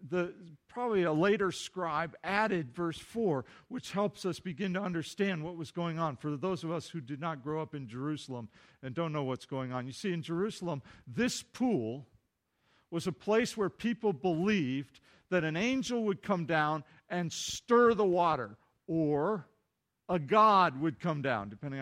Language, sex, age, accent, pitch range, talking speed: English, male, 50-69, American, 155-210 Hz, 175 wpm